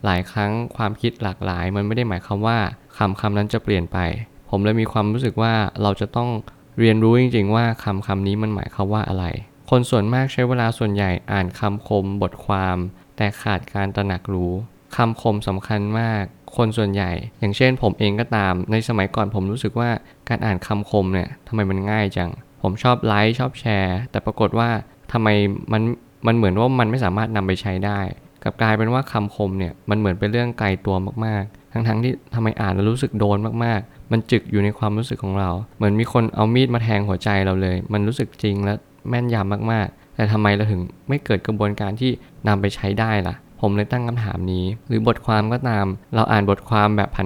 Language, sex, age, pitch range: Thai, male, 20-39, 100-115 Hz